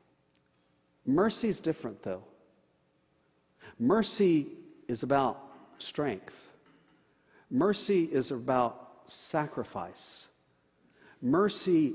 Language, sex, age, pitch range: English, male, 60-79, 95-160 Hz